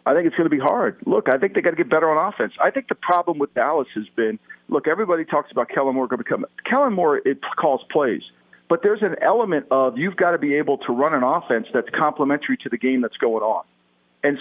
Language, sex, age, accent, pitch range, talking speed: English, male, 50-69, American, 135-195 Hz, 260 wpm